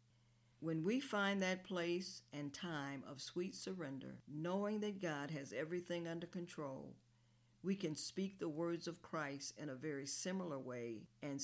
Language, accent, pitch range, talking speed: English, American, 120-170 Hz, 155 wpm